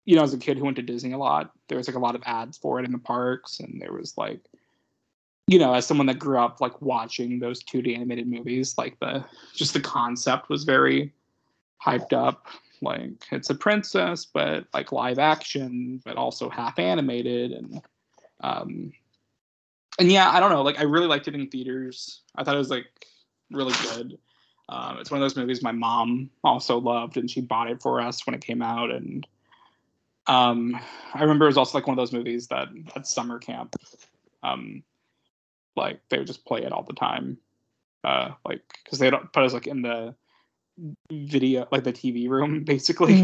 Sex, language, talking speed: male, English, 200 wpm